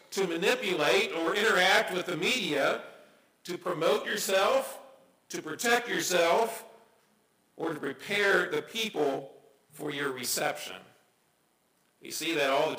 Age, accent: 50-69, American